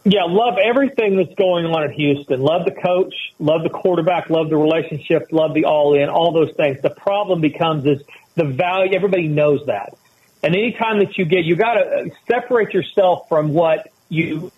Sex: male